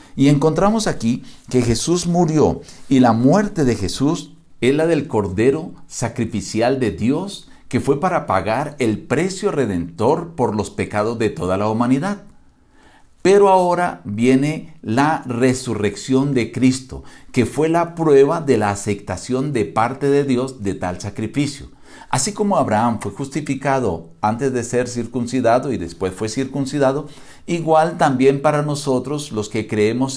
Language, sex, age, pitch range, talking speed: Spanish, male, 50-69, 110-150 Hz, 145 wpm